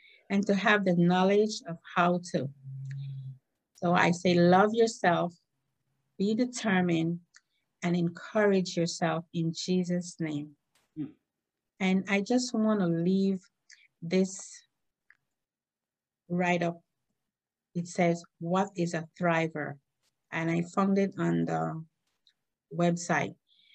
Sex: female